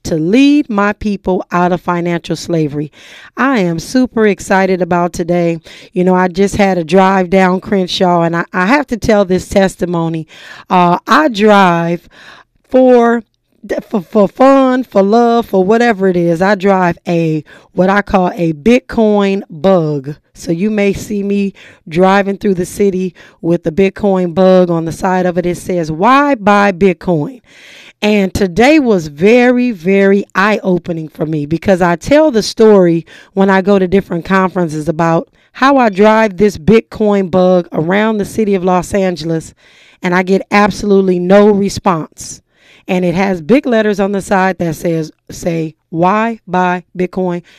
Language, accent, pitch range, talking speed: English, American, 175-210 Hz, 165 wpm